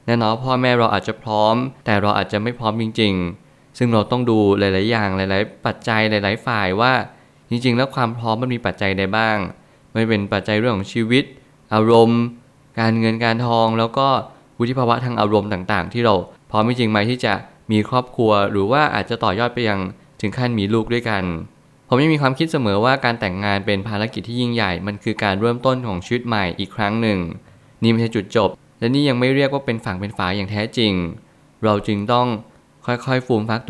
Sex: male